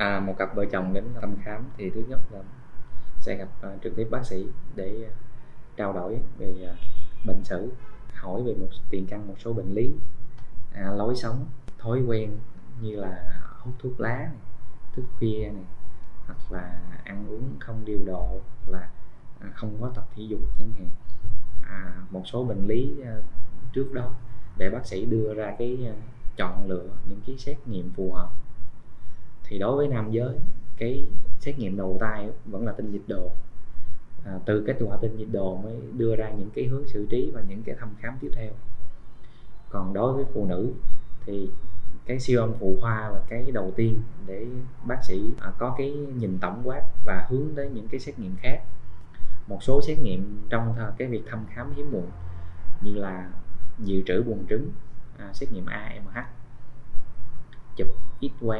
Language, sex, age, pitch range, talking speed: Vietnamese, male, 20-39, 95-120 Hz, 180 wpm